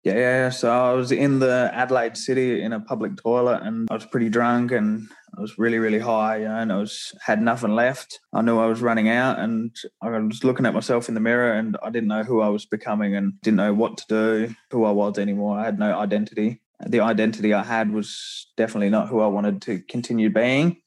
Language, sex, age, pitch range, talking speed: English, male, 20-39, 105-120 Hz, 225 wpm